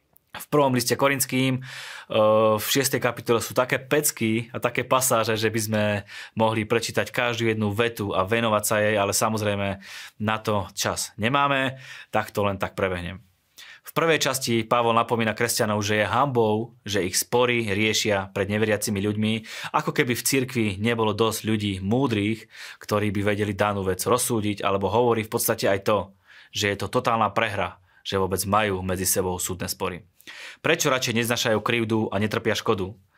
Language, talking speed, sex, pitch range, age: Slovak, 165 wpm, male, 105-120 Hz, 20-39